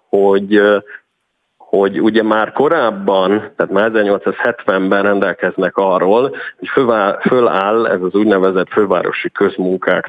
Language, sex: Hungarian, male